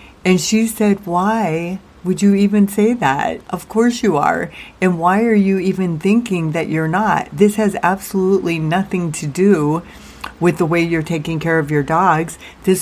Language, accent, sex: English, American, female